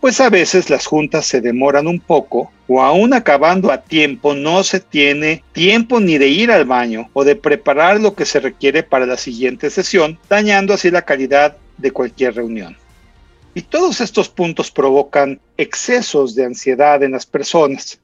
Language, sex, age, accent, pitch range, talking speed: Spanish, male, 40-59, Mexican, 135-170 Hz, 175 wpm